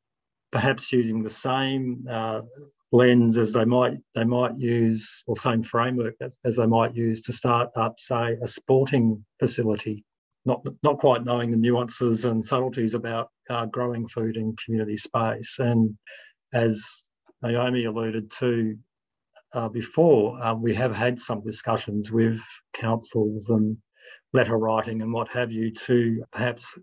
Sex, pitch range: male, 110-125 Hz